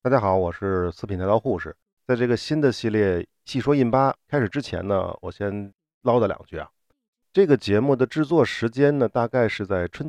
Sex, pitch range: male, 100-145 Hz